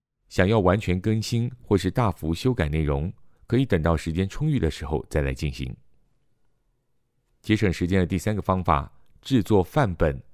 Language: Chinese